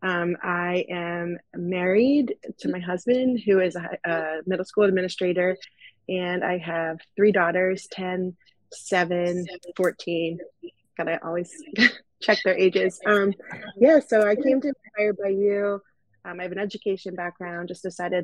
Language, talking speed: English, 150 wpm